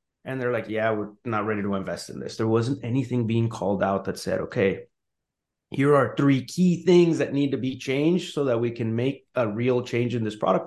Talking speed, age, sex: 230 wpm, 30-49, male